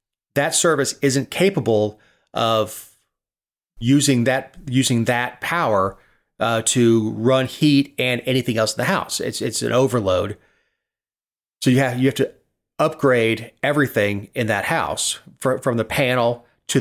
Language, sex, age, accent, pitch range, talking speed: English, male, 30-49, American, 115-140 Hz, 145 wpm